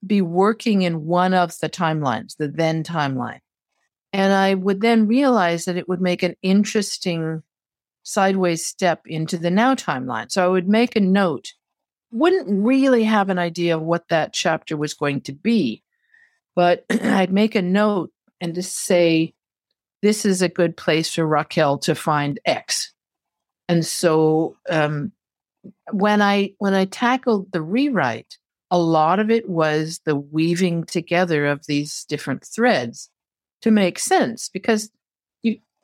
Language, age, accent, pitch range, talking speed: English, 50-69, American, 160-210 Hz, 150 wpm